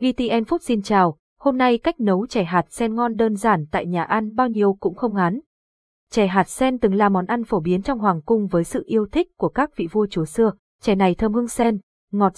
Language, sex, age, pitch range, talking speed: Vietnamese, female, 20-39, 190-245 Hz, 240 wpm